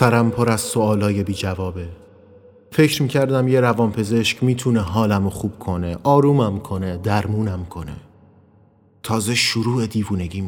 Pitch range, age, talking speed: 105-130 Hz, 30-49, 120 wpm